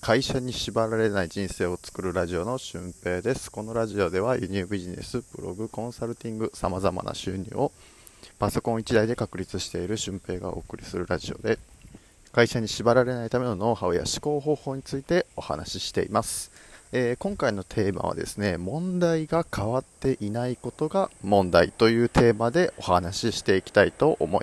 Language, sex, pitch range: Japanese, male, 95-125 Hz